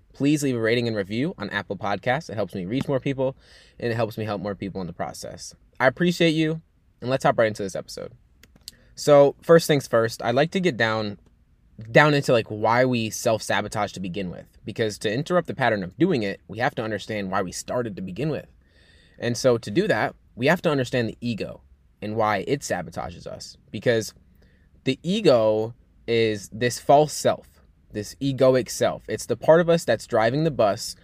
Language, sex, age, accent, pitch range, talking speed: English, male, 20-39, American, 105-130 Hz, 205 wpm